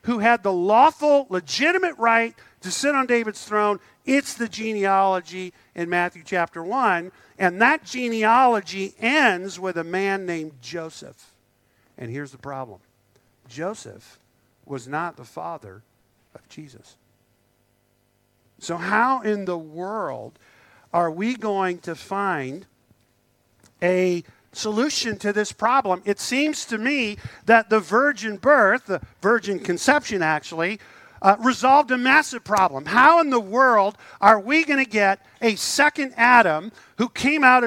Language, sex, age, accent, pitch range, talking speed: English, male, 50-69, American, 170-250 Hz, 135 wpm